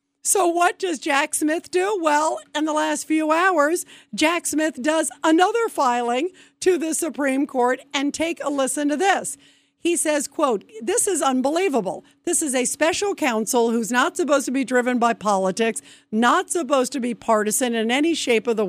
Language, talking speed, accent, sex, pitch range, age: English, 180 wpm, American, female, 245-310 Hz, 50-69